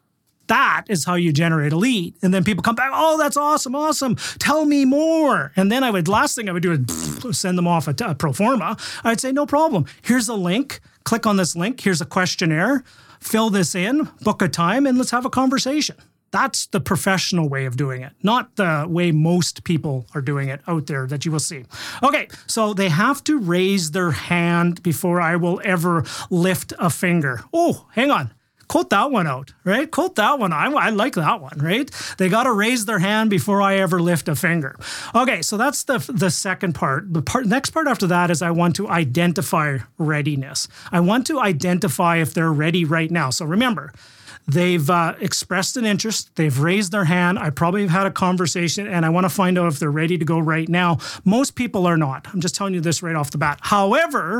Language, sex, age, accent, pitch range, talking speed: English, male, 30-49, American, 165-220 Hz, 220 wpm